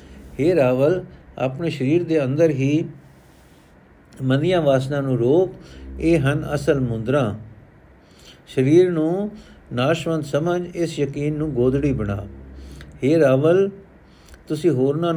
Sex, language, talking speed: male, Punjabi, 110 wpm